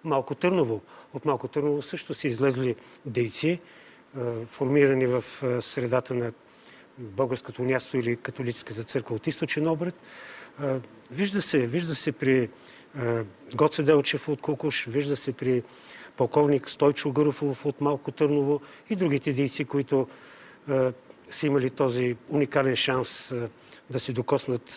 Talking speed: 145 wpm